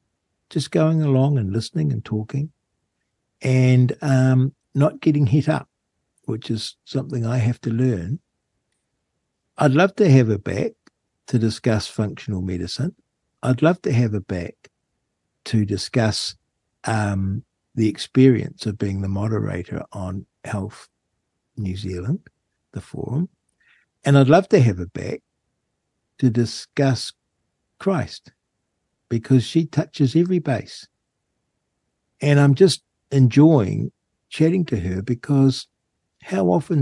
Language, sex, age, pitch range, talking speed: English, male, 60-79, 110-140 Hz, 125 wpm